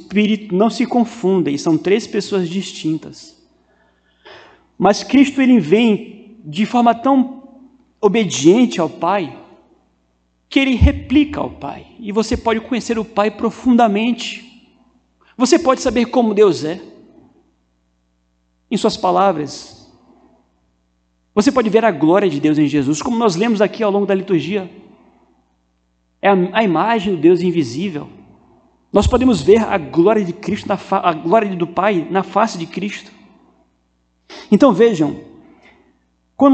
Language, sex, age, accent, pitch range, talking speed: Portuguese, male, 40-59, Brazilian, 165-235 Hz, 135 wpm